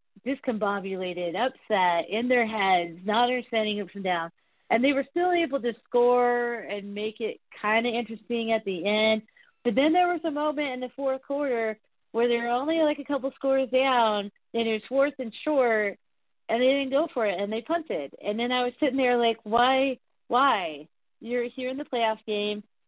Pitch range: 200-250 Hz